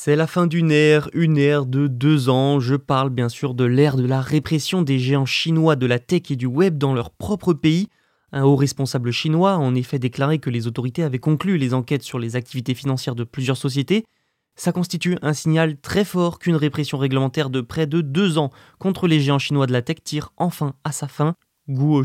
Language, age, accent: French, 20-39, French